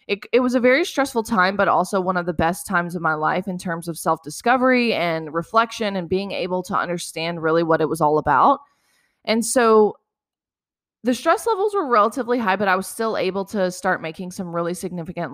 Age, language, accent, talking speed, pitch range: 20-39, English, American, 205 wpm, 170-200 Hz